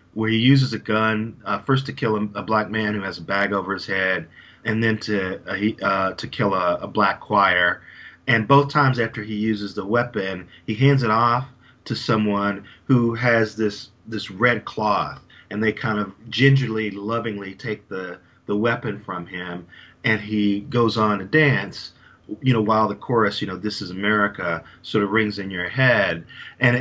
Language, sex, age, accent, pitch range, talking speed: English, male, 40-59, American, 100-115 Hz, 195 wpm